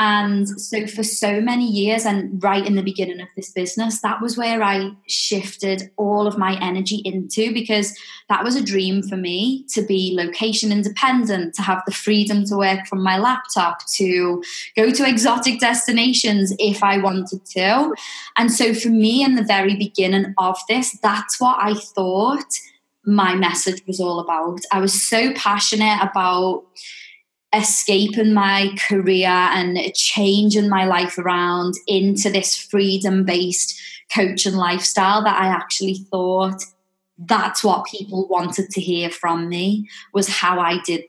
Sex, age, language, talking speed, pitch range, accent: female, 20-39, English, 155 wpm, 185-215 Hz, British